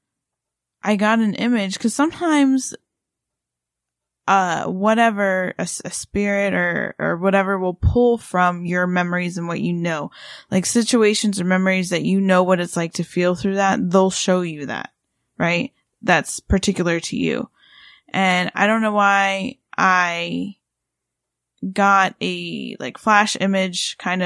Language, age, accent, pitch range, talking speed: English, 10-29, American, 175-205 Hz, 145 wpm